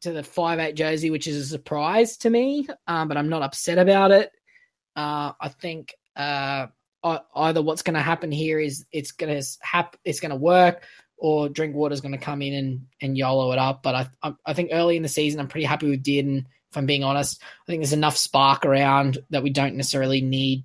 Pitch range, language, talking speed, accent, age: 140-170 Hz, English, 220 wpm, Australian, 20-39